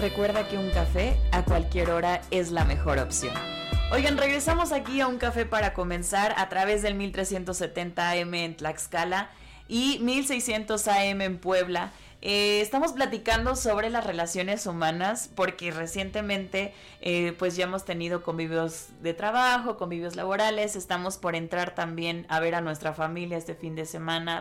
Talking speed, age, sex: 150 wpm, 20-39, female